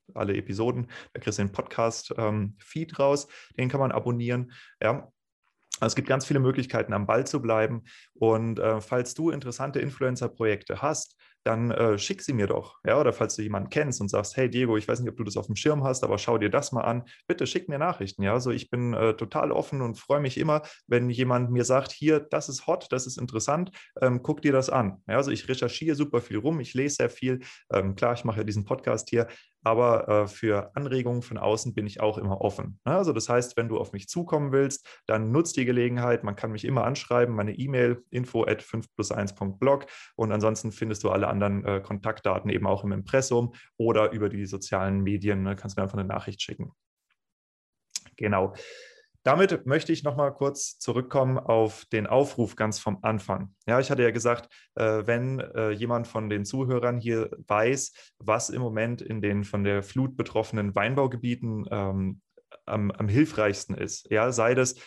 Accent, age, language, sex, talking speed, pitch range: German, 30-49, German, male, 205 wpm, 105-130 Hz